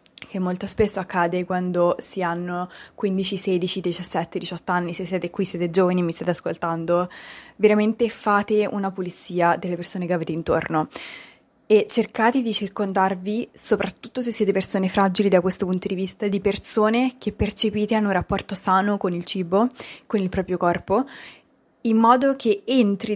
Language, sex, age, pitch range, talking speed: Italian, female, 20-39, 180-215 Hz, 165 wpm